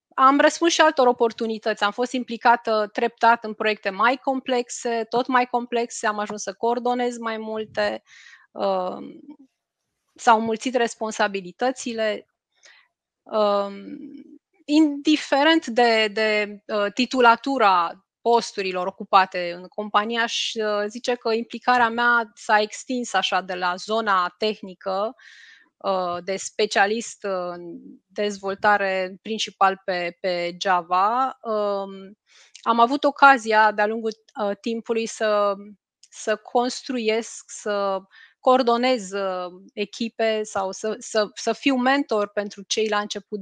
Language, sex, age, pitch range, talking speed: Romanian, female, 20-39, 200-245 Hz, 105 wpm